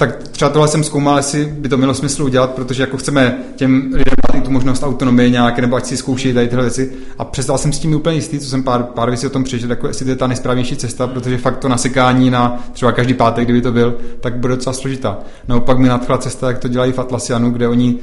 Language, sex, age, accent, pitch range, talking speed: Czech, male, 20-39, native, 120-130 Hz, 255 wpm